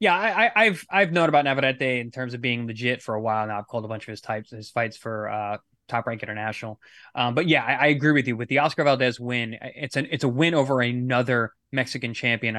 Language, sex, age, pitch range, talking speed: English, male, 20-39, 125-160 Hz, 245 wpm